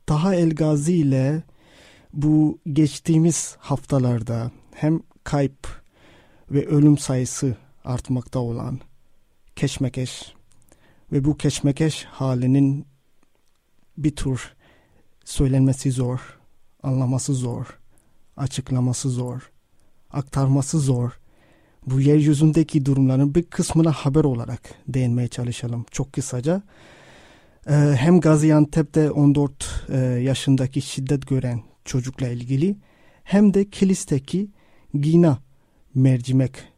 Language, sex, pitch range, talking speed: Turkish, male, 130-155 Hz, 85 wpm